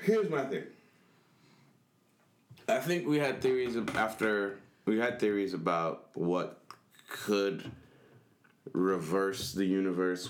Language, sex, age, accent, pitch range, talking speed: English, male, 20-39, American, 90-105 Hz, 105 wpm